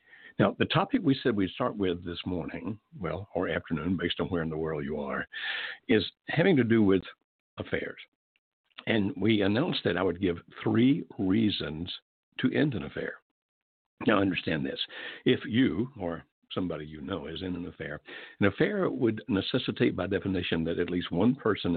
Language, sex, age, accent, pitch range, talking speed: English, male, 60-79, American, 85-105 Hz, 175 wpm